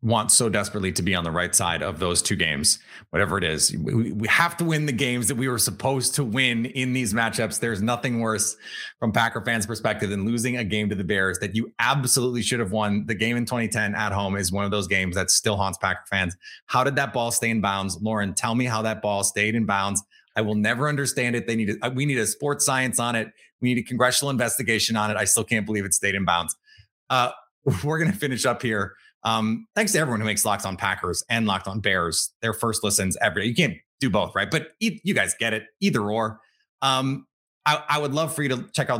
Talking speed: 250 wpm